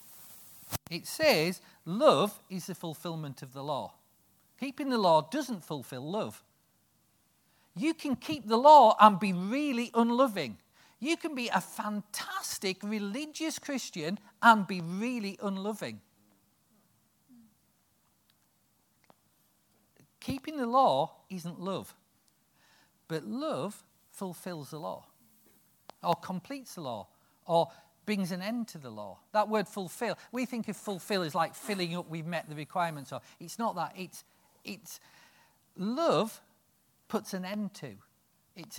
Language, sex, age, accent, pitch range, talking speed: English, male, 40-59, British, 170-235 Hz, 130 wpm